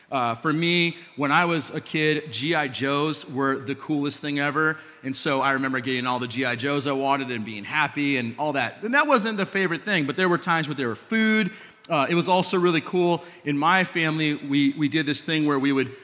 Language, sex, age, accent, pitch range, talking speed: English, male, 30-49, American, 135-160 Hz, 235 wpm